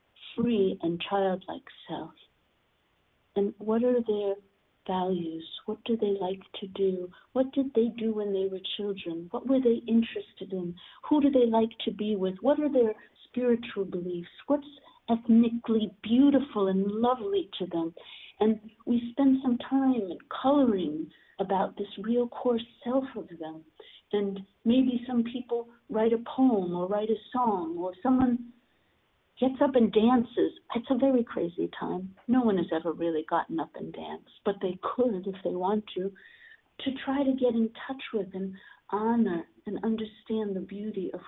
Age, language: 60-79, English